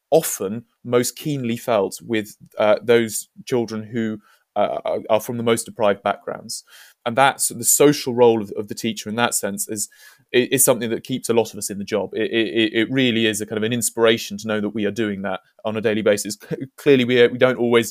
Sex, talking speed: male, 225 wpm